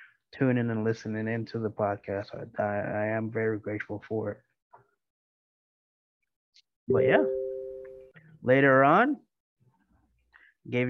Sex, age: male, 20-39